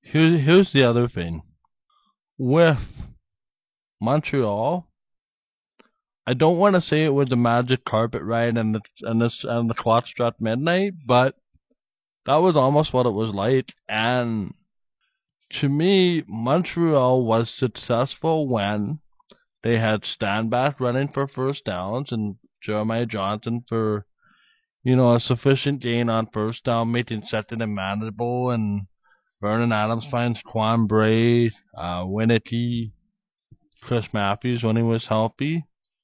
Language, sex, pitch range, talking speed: English, male, 110-135 Hz, 130 wpm